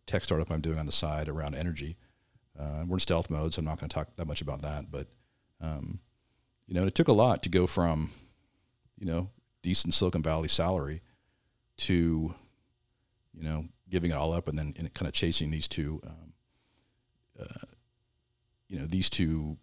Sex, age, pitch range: male, 50-69, 80-110 Hz